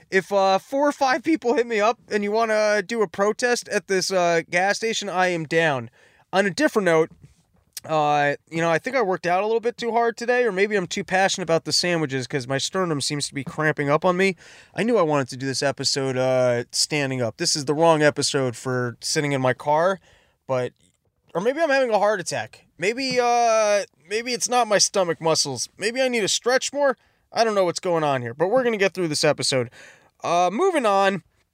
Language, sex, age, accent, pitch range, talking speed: English, male, 20-39, American, 155-205 Hz, 230 wpm